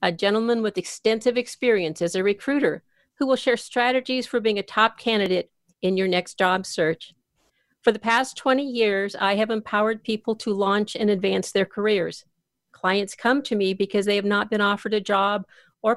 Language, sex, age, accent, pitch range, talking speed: English, female, 50-69, American, 185-220 Hz, 190 wpm